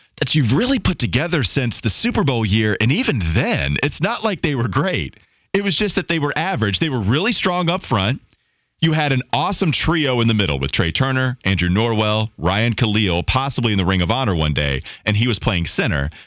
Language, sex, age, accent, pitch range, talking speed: English, male, 30-49, American, 105-160 Hz, 220 wpm